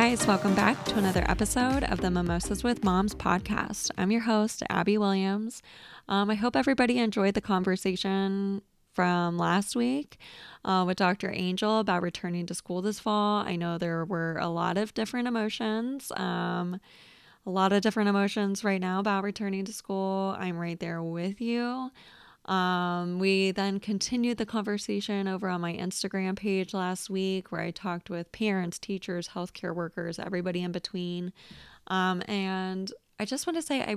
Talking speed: 170 wpm